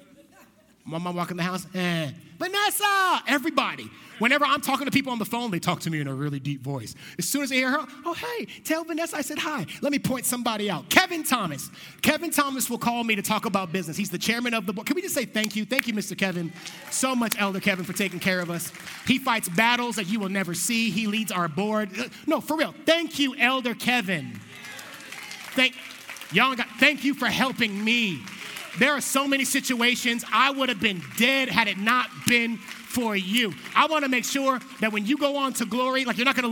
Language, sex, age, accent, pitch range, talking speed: English, male, 30-49, American, 180-255 Hz, 225 wpm